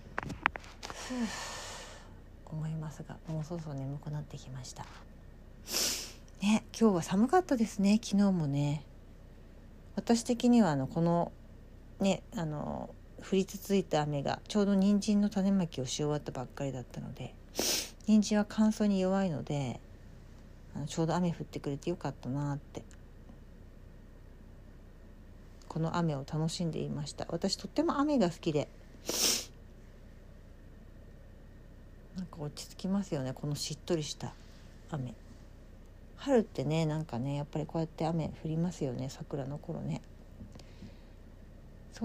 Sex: female